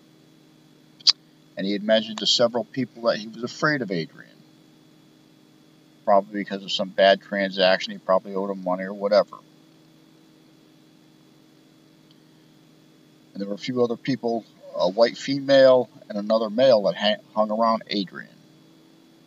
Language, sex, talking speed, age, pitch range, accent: English, male, 135 wpm, 50-69, 95-120 Hz, American